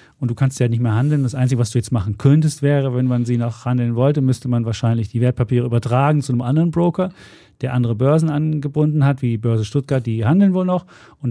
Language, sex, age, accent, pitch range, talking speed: German, male, 40-59, German, 115-130 Hz, 235 wpm